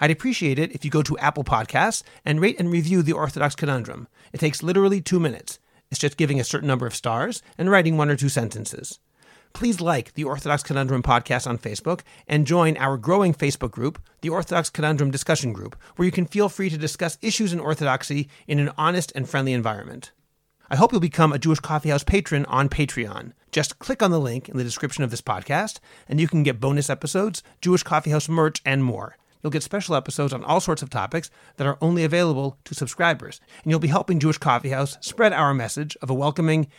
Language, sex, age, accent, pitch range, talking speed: English, male, 40-59, American, 135-165 Hz, 210 wpm